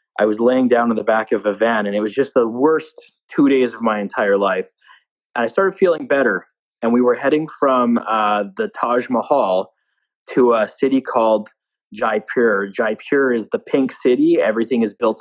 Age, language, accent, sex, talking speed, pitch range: 20-39, English, American, male, 195 wpm, 105-125 Hz